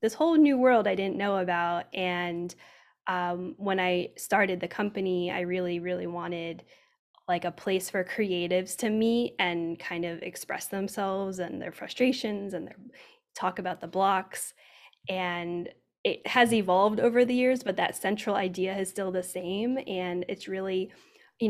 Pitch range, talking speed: 185-220 Hz, 165 wpm